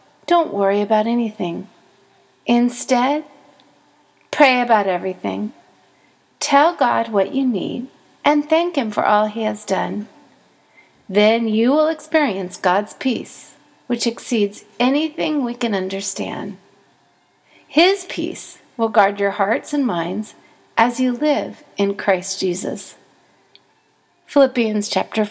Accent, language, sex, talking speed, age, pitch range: American, English, female, 115 wpm, 40-59, 205-270 Hz